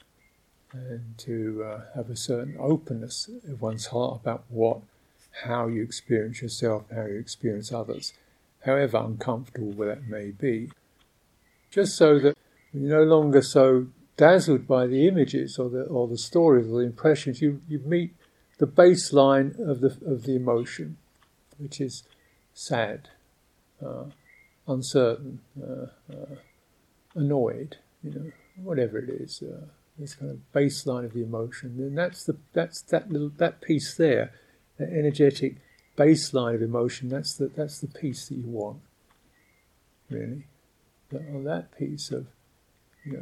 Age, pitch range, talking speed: 50-69, 115-145 Hz, 145 wpm